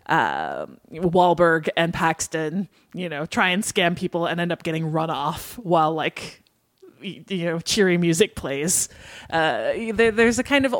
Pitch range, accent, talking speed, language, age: 170-215 Hz, American, 155 wpm, English, 20-39